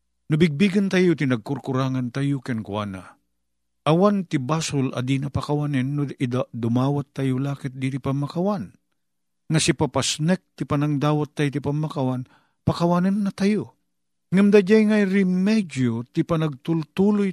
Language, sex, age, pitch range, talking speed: Filipino, male, 50-69, 125-185 Hz, 110 wpm